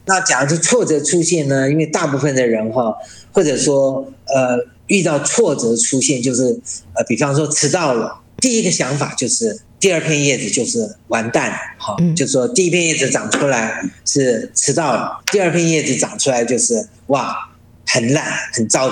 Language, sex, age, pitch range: Chinese, male, 40-59, 125-170 Hz